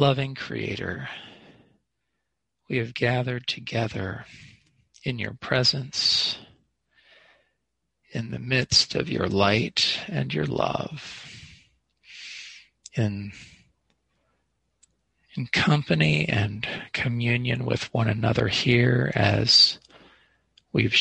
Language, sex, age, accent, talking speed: English, male, 40-59, American, 85 wpm